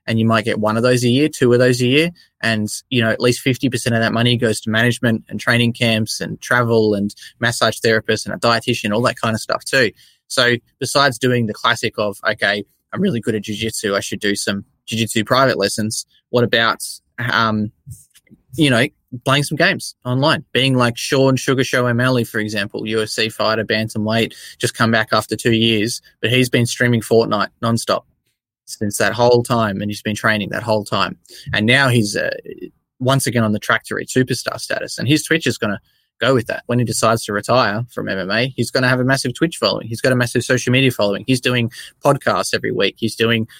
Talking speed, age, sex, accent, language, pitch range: 215 wpm, 20-39, male, Australian, English, 110-125 Hz